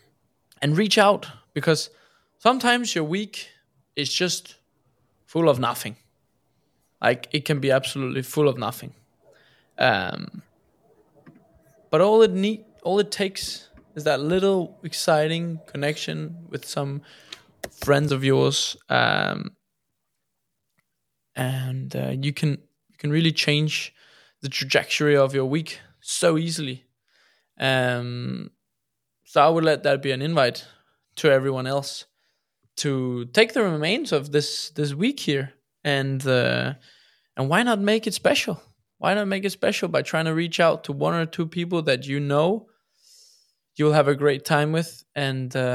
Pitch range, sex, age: 135-170 Hz, male, 20-39